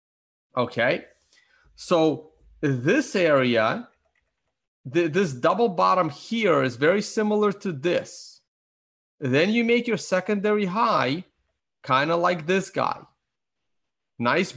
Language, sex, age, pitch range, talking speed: English, male, 30-49, 130-200 Hz, 105 wpm